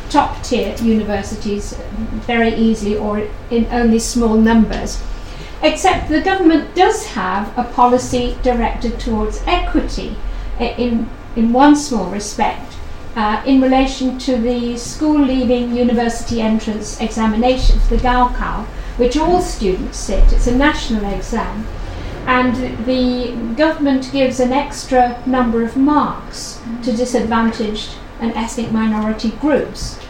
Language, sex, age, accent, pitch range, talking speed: English, female, 50-69, British, 225-265 Hz, 120 wpm